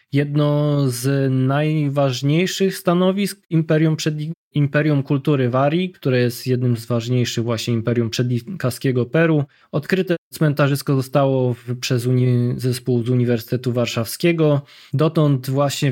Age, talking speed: 20-39, 100 wpm